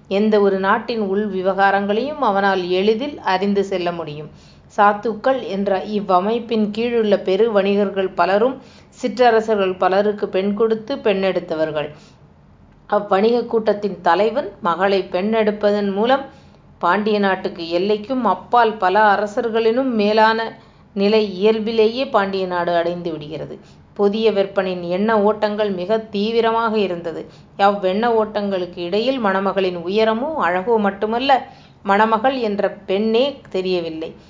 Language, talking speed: Tamil, 105 wpm